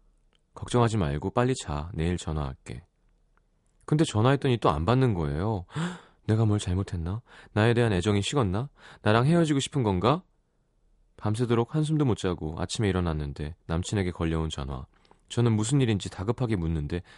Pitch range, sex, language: 85-135 Hz, male, Korean